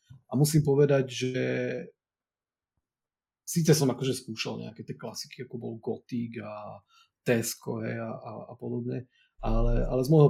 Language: Slovak